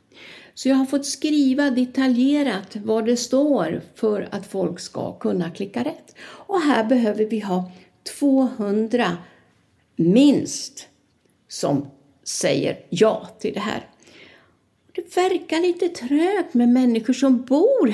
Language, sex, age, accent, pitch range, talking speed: Swedish, female, 60-79, native, 220-275 Hz, 125 wpm